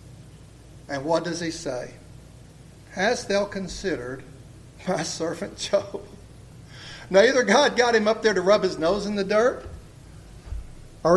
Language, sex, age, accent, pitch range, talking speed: English, male, 50-69, American, 170-275 Hz, 140 wpm